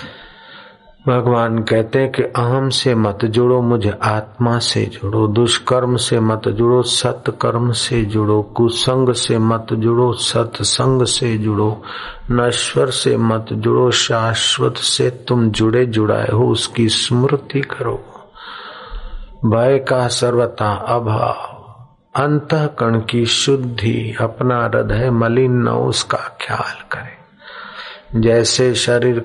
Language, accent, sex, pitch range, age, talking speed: Hindi, native, male, 110-125 Hz, 50-69, 115 wpm